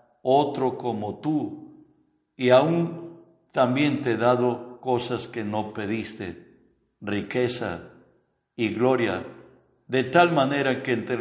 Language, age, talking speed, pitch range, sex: Spanish, 60-79, 110 wpm, 100-125 Hz, male